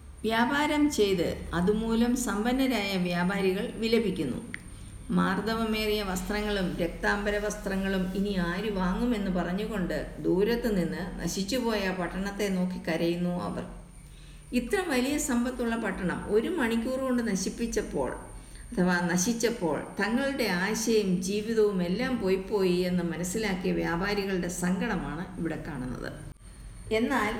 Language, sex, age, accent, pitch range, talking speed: Malayalam, female, 50-69, native, 175-230 Hz, 95 wpm